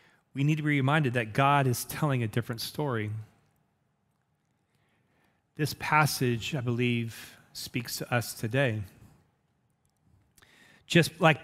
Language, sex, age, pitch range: English, male, 30-49, 120-150 Hz